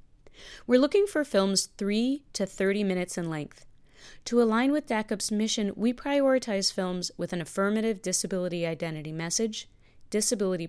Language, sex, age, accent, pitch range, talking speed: English, female, 30-49, American, 170-220 Hz, 140 wpm